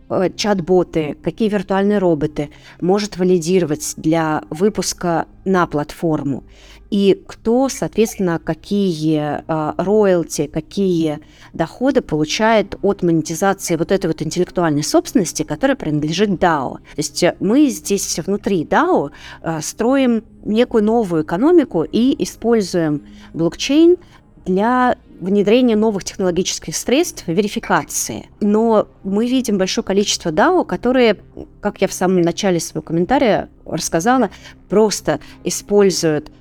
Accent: native